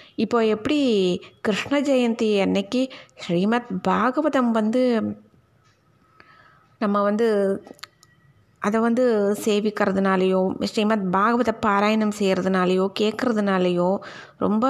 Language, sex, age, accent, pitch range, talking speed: Tamil, female, 20-39, native, 185-240 Hz, 80 wpm